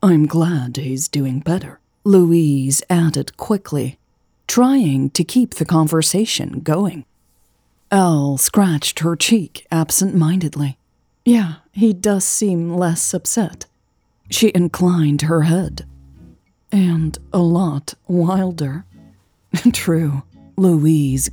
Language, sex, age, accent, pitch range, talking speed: English, female, 40-59, American, 140-180 Hz, 100 wpm